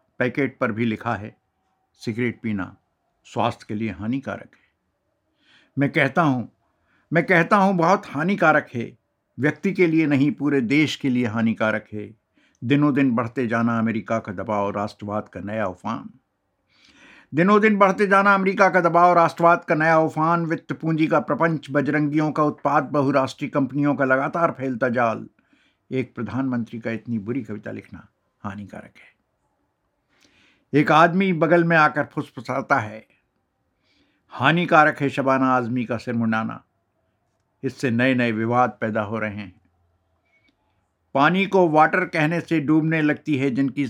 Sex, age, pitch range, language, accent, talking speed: male, 60-79, 115-155 Hz, Hindi, native, 150 wpm